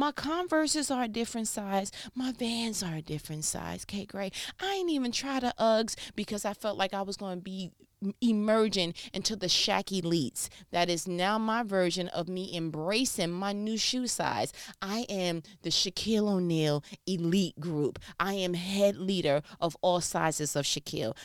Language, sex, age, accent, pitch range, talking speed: English, female, 30-49, American, 160-220 Hz, 170 wpm